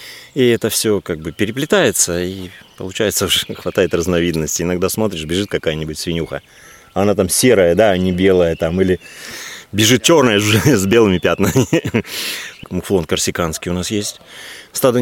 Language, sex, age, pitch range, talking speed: Russian, male, 30-49, 85-115 Hz, 145 wpm